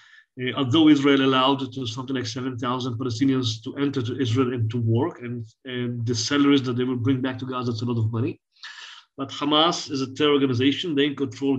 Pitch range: 125-150 Hz